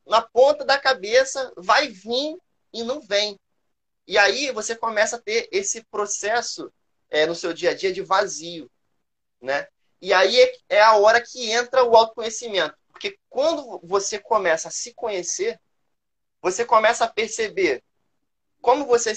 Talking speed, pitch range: 145 wpm, 190-265 Hz